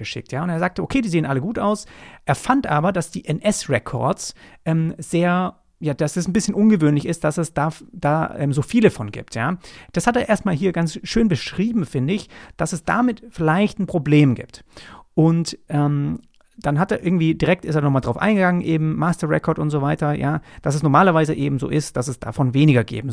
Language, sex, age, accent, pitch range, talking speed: German, male, 40-59, German, 130-190 Hz, 215 wpm